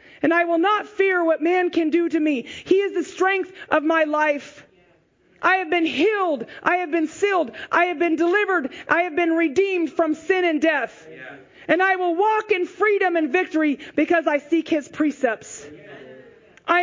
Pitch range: 280-355 Hz